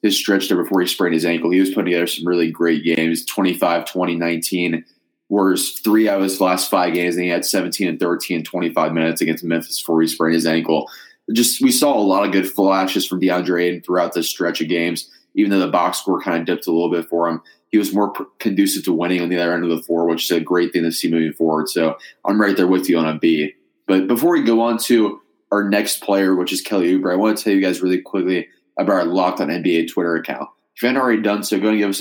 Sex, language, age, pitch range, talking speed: male, English, 20-39, 85-100 Hz, 260 wpm